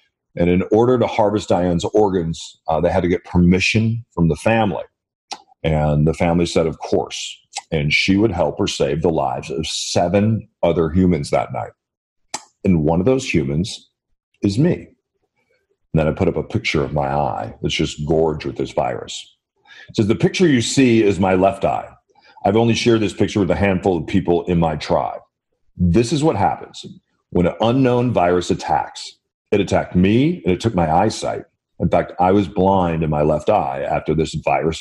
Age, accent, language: 40-59, American, English